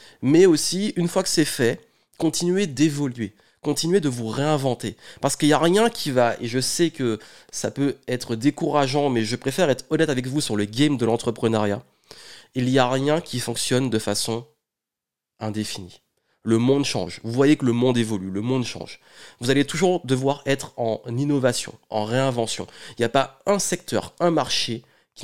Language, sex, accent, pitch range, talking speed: French, male, French, 115-155 Hz, 190 wpm